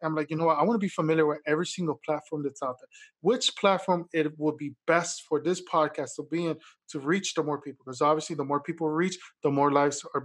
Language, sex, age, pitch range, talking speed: English, male, 20-39, 150-185 Hz, 260 wpm